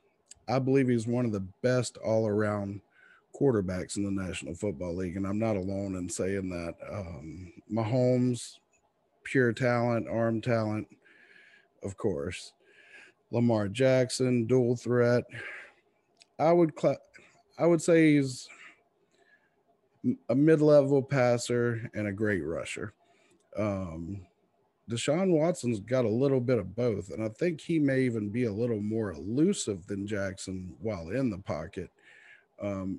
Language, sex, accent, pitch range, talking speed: English, male, American, 100-130 Hz, 140 wpm